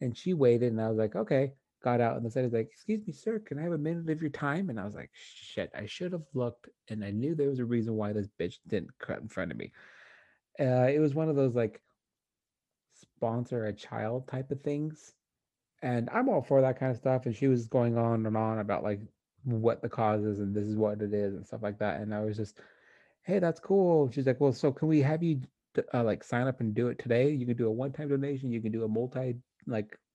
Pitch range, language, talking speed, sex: 110-135 Hz, English, 255 wpm, male